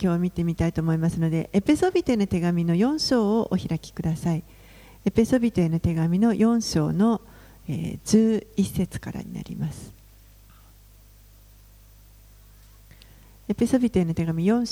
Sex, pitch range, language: female, 155-225 Hz, Japanese